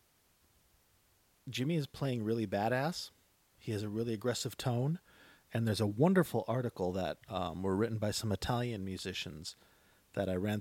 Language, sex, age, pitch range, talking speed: English, male, 40-59, 95-120 Hz, 155 wpm